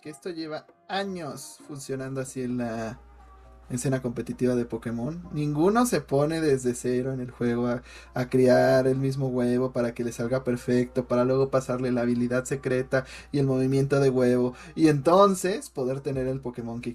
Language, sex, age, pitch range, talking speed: Spanish, male, 20-39, 130-185 Hz, 175 wpm